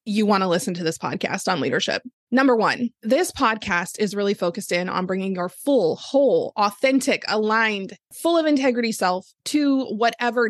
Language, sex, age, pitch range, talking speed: English, female, 20-39, 200-245 Hz, 170 wpm